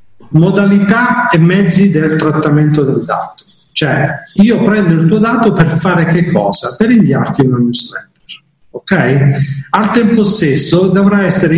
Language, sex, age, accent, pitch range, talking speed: Italian, male, 40-59, native, 145-185 Hz, 140 wpm